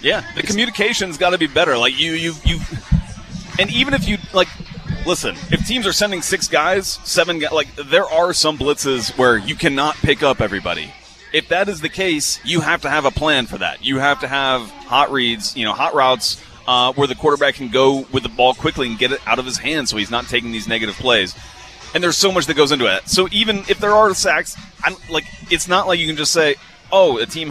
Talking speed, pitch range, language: 235 wpm, 125-165 Hz, English